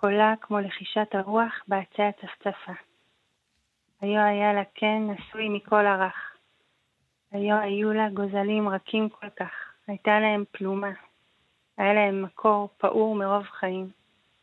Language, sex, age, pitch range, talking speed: Hebrew, female, 30-49, 195-210 Hz, 125 wpm